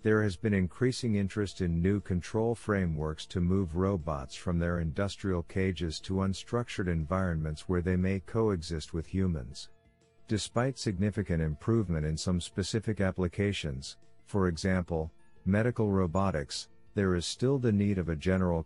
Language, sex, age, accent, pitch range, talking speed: English, male, 50-69, American, 85-105 Hz, 140 wpm